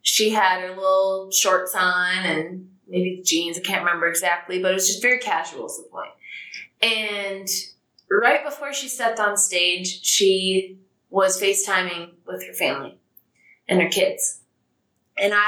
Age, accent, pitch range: 20-39, American, 190-315 Hz